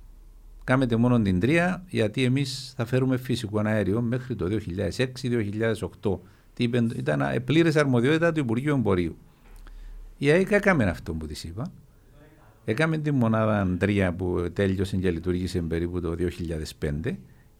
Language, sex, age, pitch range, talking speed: Greek, male, 60-79, 95-140 Hz, 125 wpm